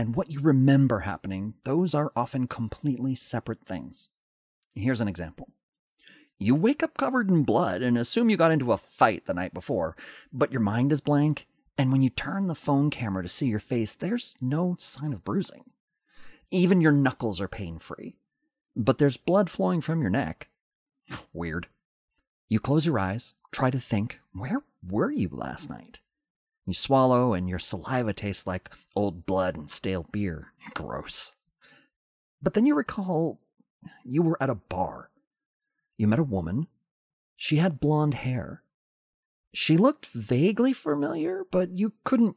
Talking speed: 160 wpm